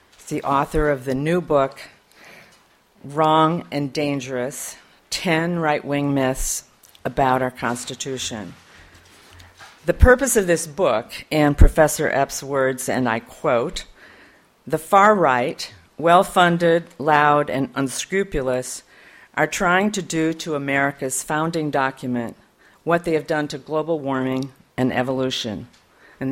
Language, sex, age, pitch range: English, female, 50-69, 130-160 Hz